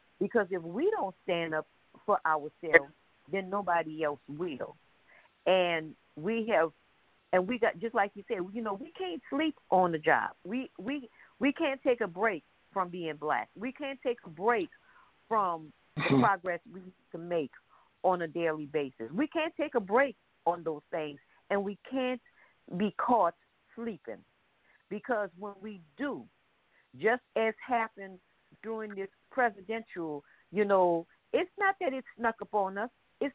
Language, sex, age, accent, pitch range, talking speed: English, female, 50-69, American, 175-255 Hz, 165 wpm